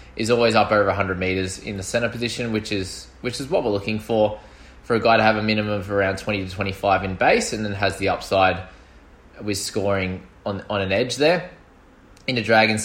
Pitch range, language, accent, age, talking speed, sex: 95-120 Hz, English, Australian, 20-39, 220 wpm, male